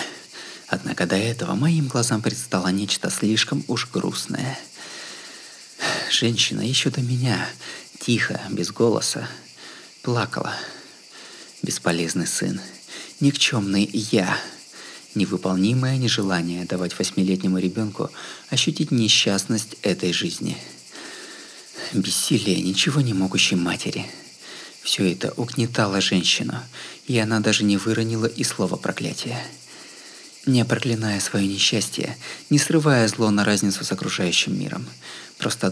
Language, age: Russian, 30-49